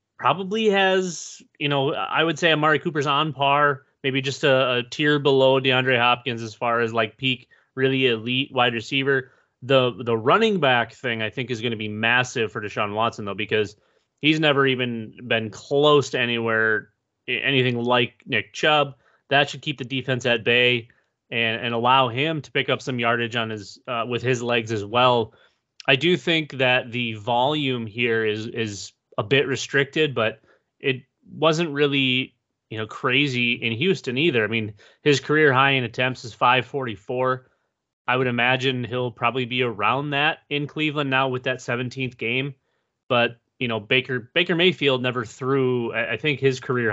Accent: American